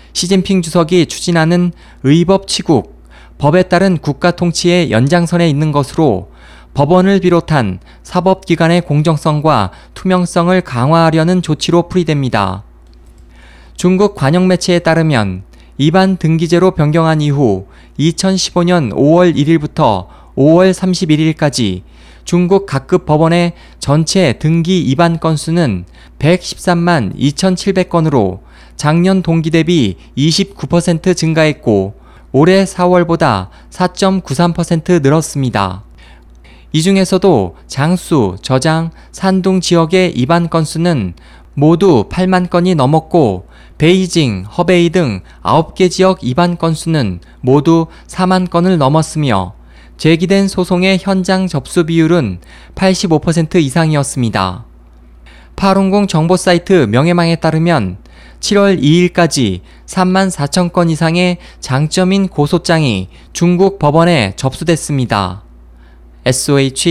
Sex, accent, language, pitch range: male, native, Korean, 120-180 Hz